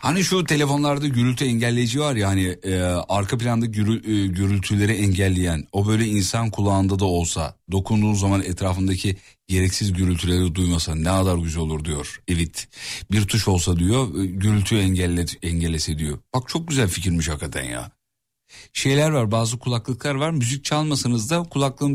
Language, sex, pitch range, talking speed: Turkish, male, 95-135 Hz, 155 wpm